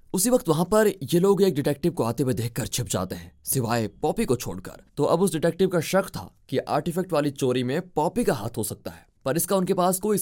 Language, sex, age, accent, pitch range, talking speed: Hindi, male, 20-39, native, 115-165 Hz, 245 wpm